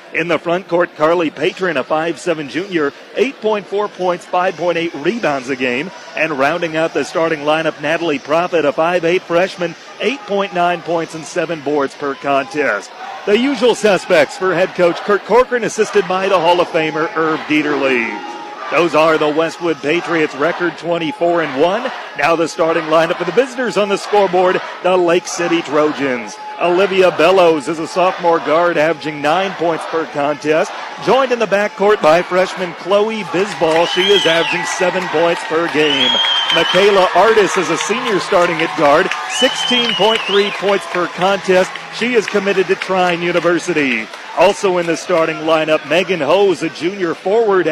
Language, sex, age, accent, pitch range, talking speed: English, male, 40-59, American, 160-190 Hz, 165 wpm